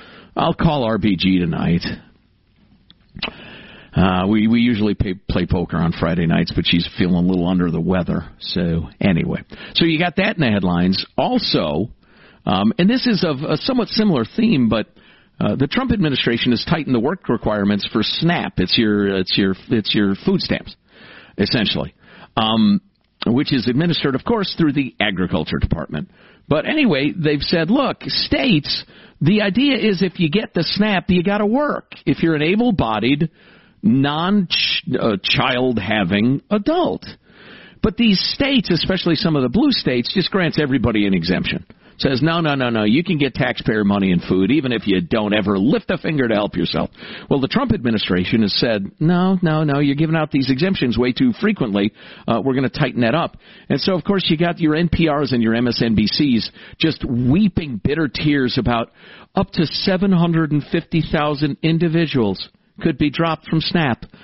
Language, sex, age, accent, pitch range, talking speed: English, male, 50-69, American, 115-185 Hz, 170 wpm